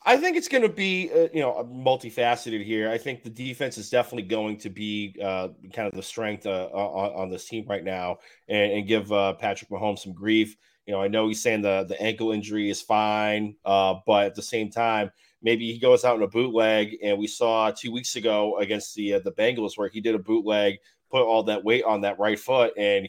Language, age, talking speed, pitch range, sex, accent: English, 30-49, 235 wpm, 105-125 Hz, male, American